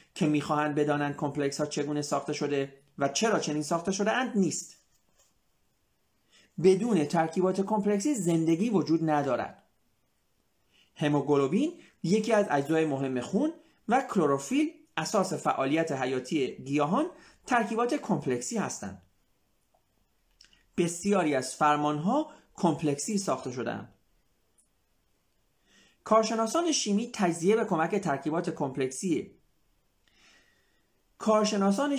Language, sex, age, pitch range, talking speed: Persian, male, 40-59, 150-220 Hz, 95 wpm